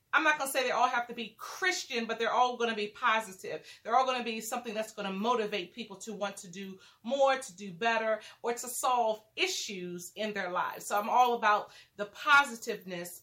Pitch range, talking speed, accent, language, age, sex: 215-280 Hz, 225 wpm, American, English, 30-49, female